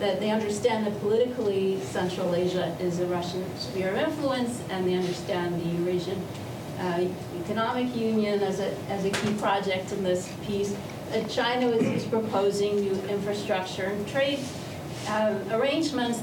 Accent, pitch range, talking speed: American, 185-220 Hz, 150 wpm